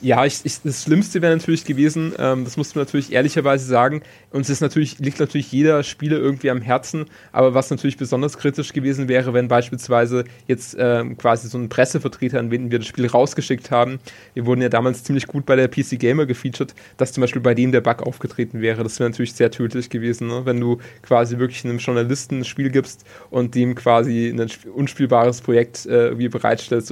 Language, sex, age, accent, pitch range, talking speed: German, male, 20-39, German, 115-130 Hz, 190 wpm